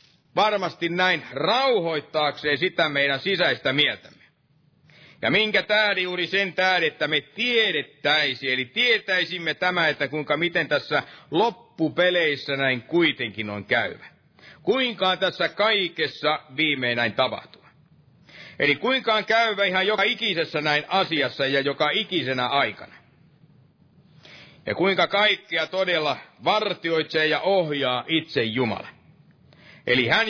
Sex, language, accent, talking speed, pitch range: male, Finnish, native, 115 wpm, 145-185 Hz